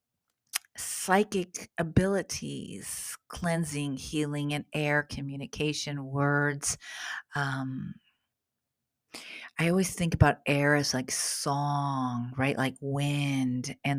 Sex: female